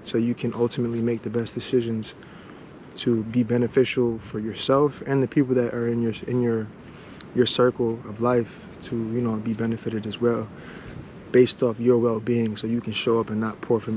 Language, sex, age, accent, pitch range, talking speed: English, male, 20-39, American, 115-125 Hz, 200 wpm